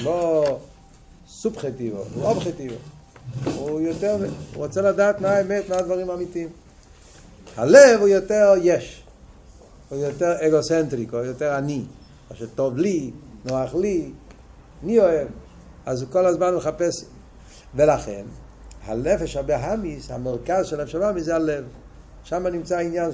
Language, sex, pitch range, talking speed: Hebrew, male, 145-195 Hz, 125 wpm